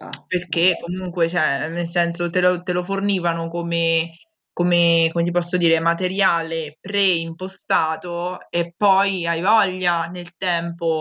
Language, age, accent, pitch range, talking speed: Italian, 20-39, native, 170-195 Hz, 120 wpm